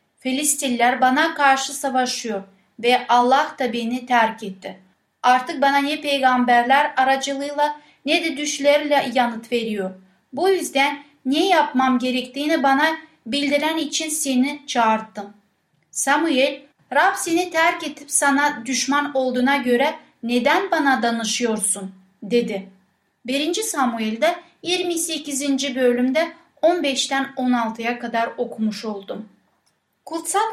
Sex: female